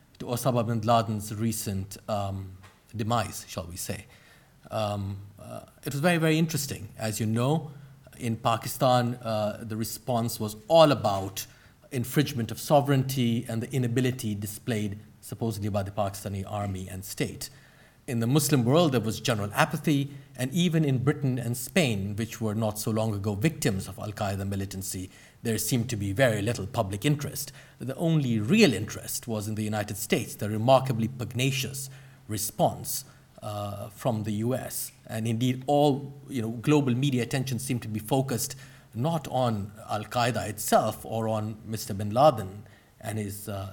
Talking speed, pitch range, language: 155 wpm, 105-135 Hz, English